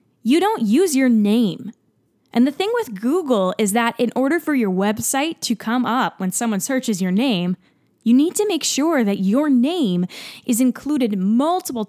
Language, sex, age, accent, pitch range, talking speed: English, female, 10-29, American, 195-260 Hz, 180 wpm